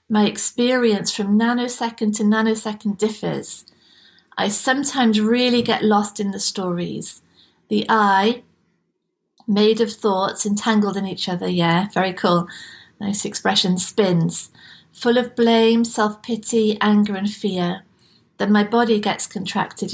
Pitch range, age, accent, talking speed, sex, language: 200-230 Hz, 40-59, British, 125 wpm, female, English